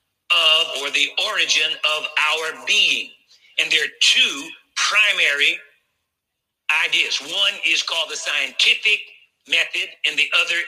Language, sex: English, male